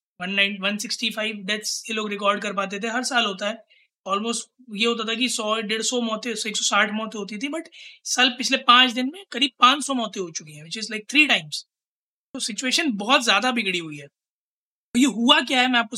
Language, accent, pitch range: Hindi, native, 205-275 Hz